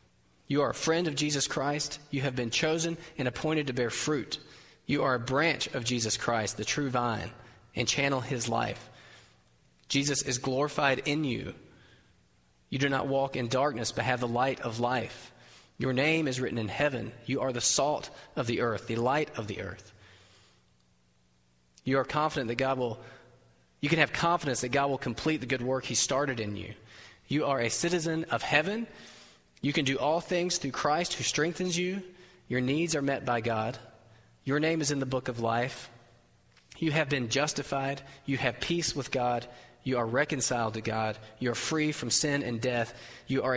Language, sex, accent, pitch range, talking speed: English, male, American, 115-145 Hz, 190 wpm